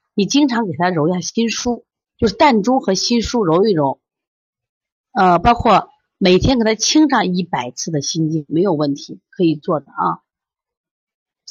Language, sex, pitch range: Chinese, female, 180-275 Hz